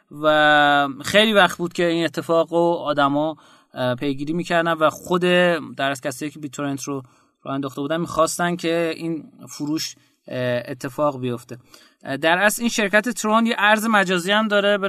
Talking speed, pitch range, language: 155 wpm, 140-190 Hz, Persian